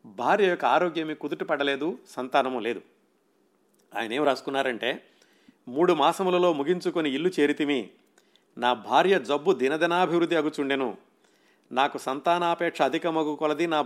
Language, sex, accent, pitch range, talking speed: Telugu, male, native, 130-160 Hz, 100 wpm